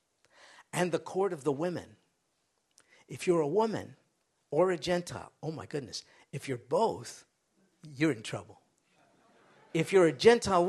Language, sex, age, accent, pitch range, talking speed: English, male, 50-69, American, 160-215 Hz, 145 wpm